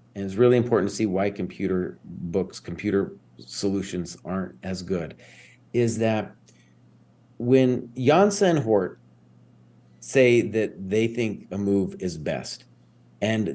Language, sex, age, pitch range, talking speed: English, male, 40-59, 100-145 Hz, 125 wpm